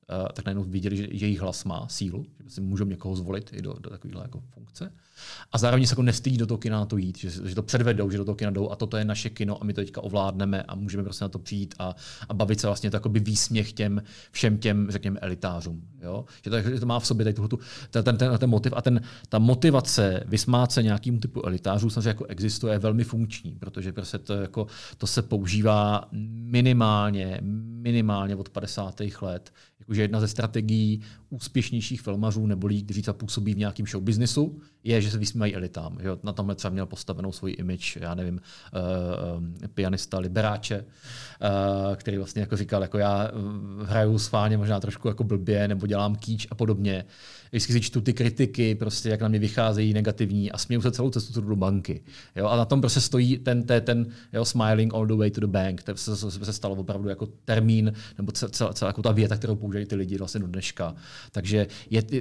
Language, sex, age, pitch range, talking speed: Czech, male, 40-59, 100-120 Hz, 210 wpm